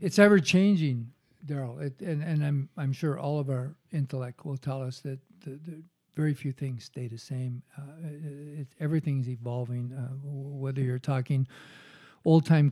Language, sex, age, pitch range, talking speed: English, male, 50-69, 130-150 Hz, 170 wpm